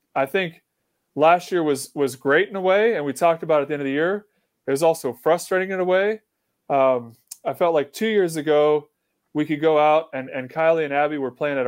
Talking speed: 240 wpm